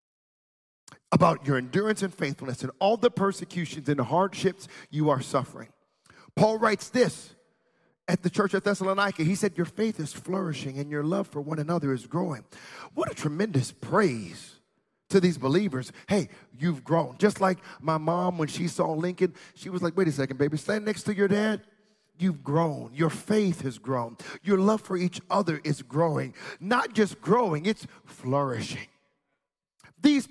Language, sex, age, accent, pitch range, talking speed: English, male, 40-59, American, 155-220 Hz, 170 wpm